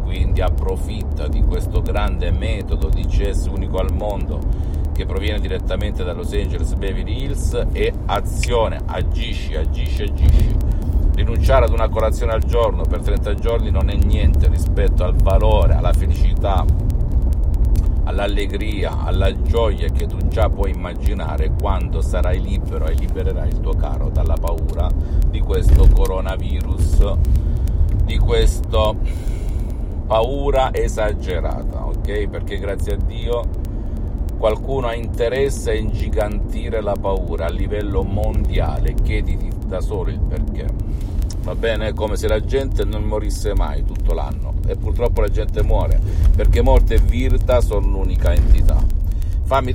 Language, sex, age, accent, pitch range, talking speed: Italian, male, 50-69, native, 80-100 Hz, 135 wpm